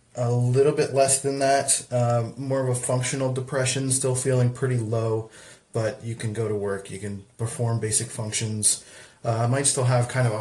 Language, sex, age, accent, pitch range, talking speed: English, male, 20-39, American, 110-130 Hz, 200 wpm